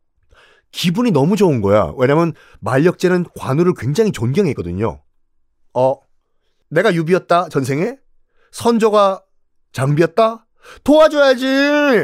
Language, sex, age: Korean, male, 40-59